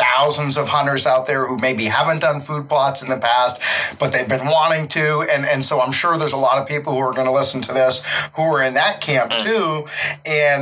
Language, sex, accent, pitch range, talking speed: English, male, American, 130-165 Hz, 245 wpm